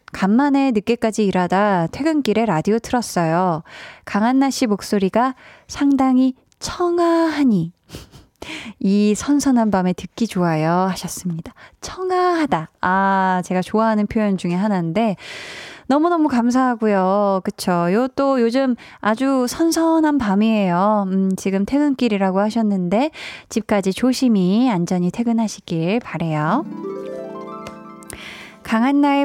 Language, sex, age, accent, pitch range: Korean, female, 20-39, native, 185-255 Hz